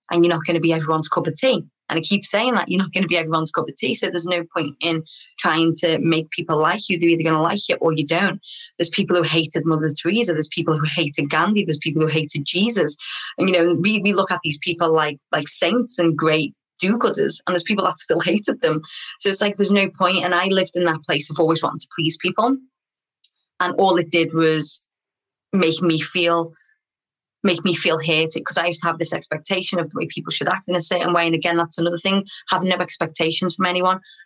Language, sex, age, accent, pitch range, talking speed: English, female, 20-39, British, 160-185 Hz, 245 wpm